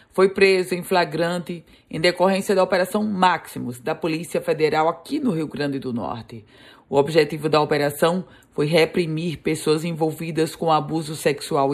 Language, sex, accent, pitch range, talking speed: Portuguese, female, Brazilian, 155-190 Hz, 150 wpm